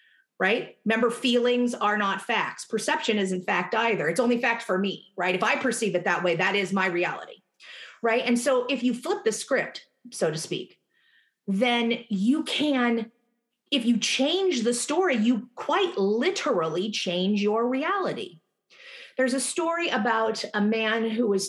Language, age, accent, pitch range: English, 30-49, American, 185-245 Hz